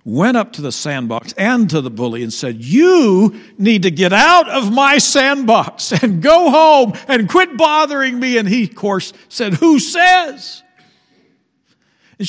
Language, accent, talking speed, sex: English, American, 165 wpm, male